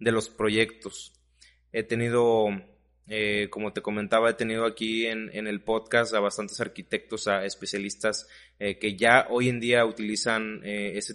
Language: Spanish